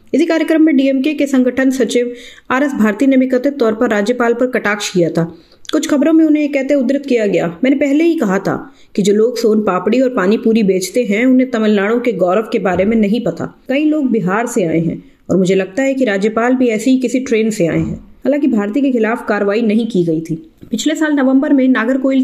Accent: Indian